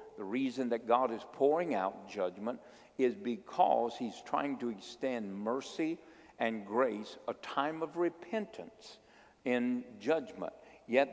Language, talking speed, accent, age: English, 130 wpm, American, 50-69